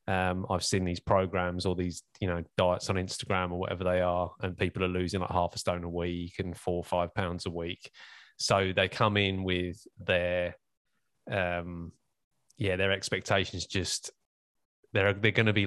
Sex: male